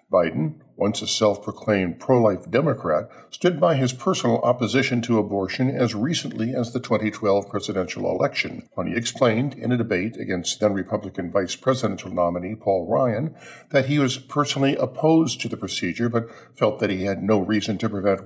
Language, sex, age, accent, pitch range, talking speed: English, male, 50-69, American, 100-130 Hz, 160 wpm